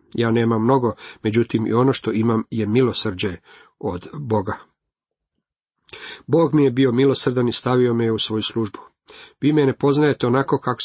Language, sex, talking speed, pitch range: Croatian, male, 160 wpm, 110-140 Hz